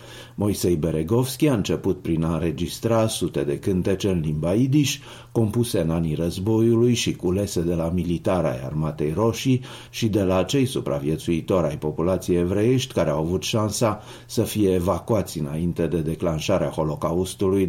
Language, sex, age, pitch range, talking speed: Romanian, male, 50-69, 85-115 Hz, 150 wpm